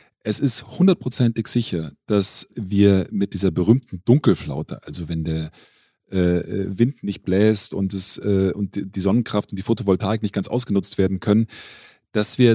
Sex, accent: male, German